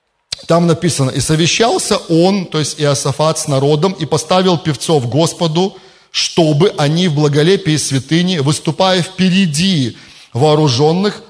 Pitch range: 145-185 Hz